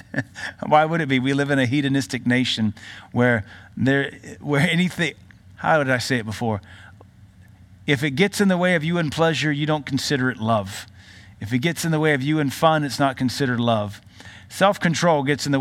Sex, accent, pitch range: male, American, 105-165 Hz